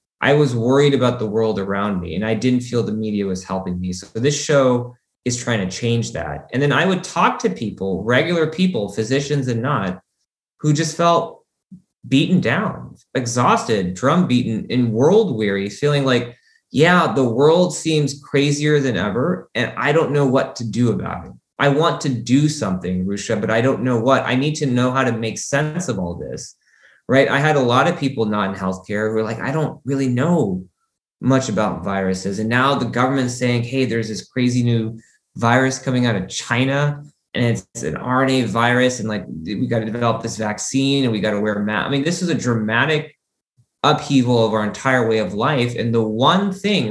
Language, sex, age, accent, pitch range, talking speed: English, male, 20-39, American, 110-140 Hz, 200 wpm